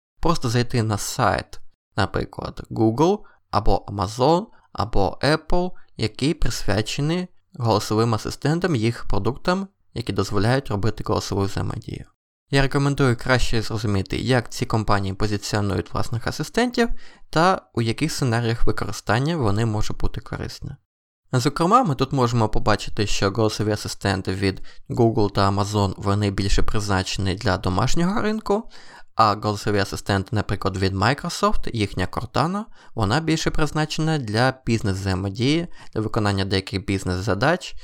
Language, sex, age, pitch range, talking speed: Ukrainian, male, 20-39, 100-145 Hz, 120 wpm